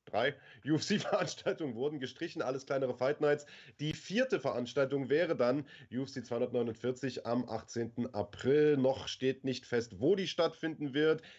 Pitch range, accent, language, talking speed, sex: 120-145 Hz, German, German, 135 wpm, male